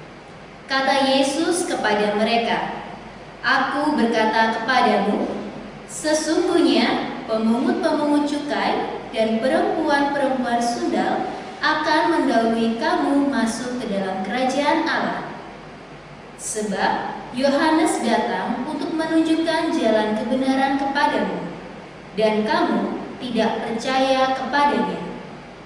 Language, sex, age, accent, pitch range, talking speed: Indonesian, female, 20-39, native, 215-290 Hz, 80 wpm